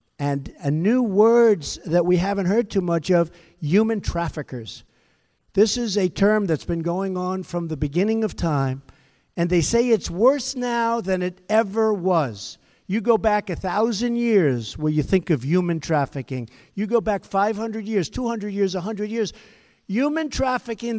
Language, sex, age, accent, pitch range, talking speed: English, male, 60-79, American, 140-210 Hz, 170 wpm